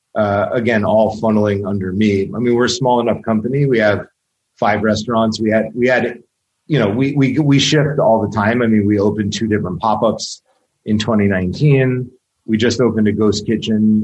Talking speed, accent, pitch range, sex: 190 wpm, American, 105-125 Hz, male